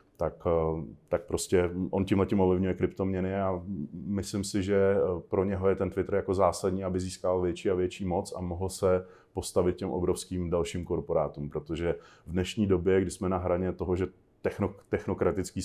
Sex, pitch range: male, 85-95 Hz